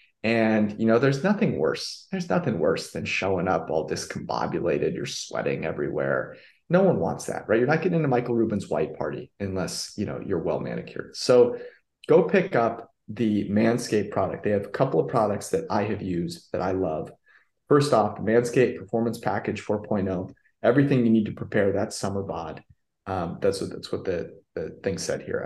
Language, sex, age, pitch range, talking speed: English, male, 30-49, 100-120 Hz, 190 wpm